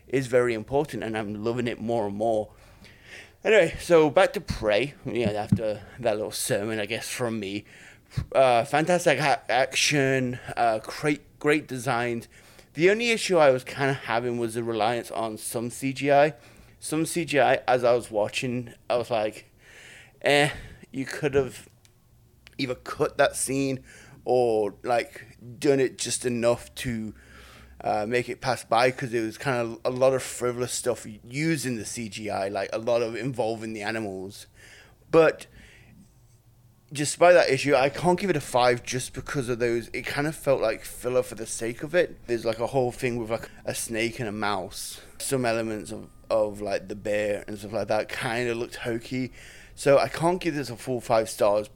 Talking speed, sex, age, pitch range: 180 wpm, male, 20-39, 110-135 Hz